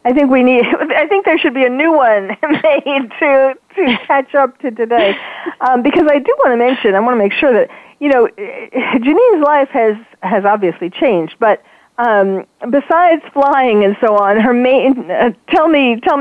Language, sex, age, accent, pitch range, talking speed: English, female, 40-59, American, 215-275 Hz, 195 wpm